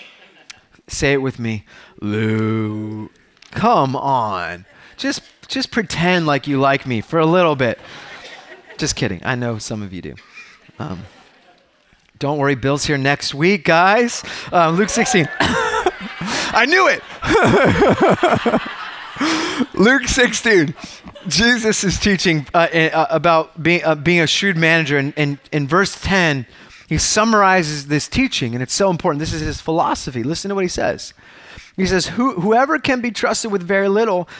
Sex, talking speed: male, 150 wpm